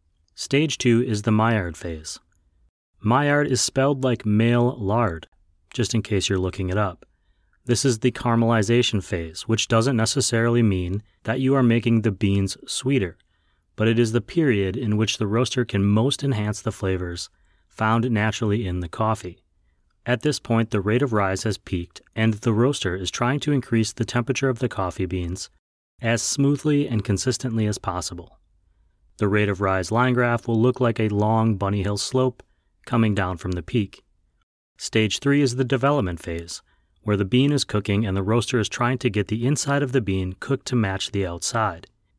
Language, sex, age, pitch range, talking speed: English, male, 30-49, 95-120 Hz, 180 wpm